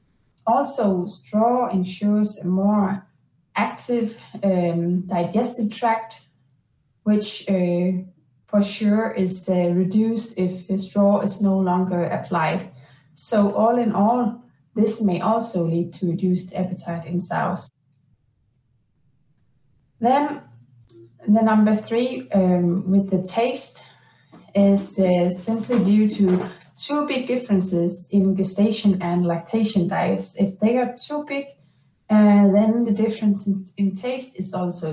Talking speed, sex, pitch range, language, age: 120 wpm, female, 175-215 Hz, Danish, 20-39